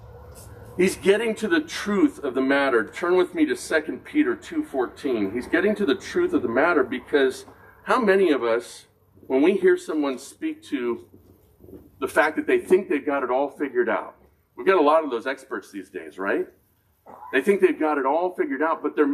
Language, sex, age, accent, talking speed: English, male, 50-69, American, 205 wpm